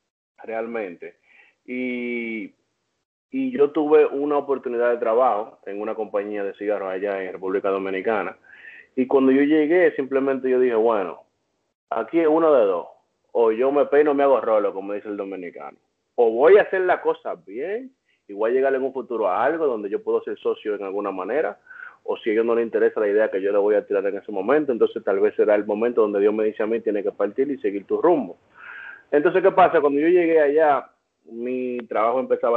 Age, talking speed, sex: 30-49, 210 wpm, male